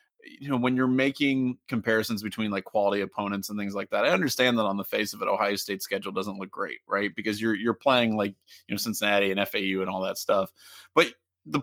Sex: male